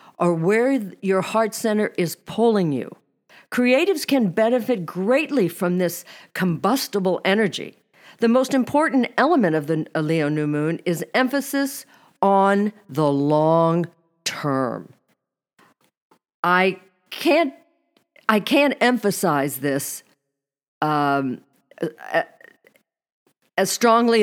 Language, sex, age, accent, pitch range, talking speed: English, female, 50-69, American, 175-245 Hz, 100 wpm